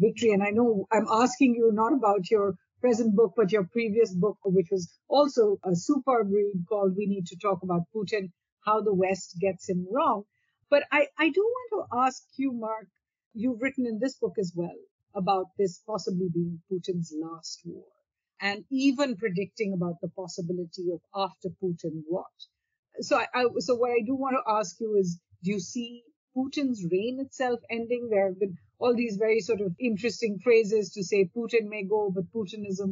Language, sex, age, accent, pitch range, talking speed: English, female, 50-69, Indian, 185-235 Hz, 190 wpm